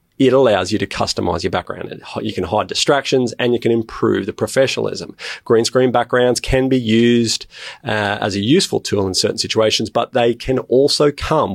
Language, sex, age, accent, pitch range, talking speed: English, male, 40-59, Australian, 105-130 Hz, 185 wpm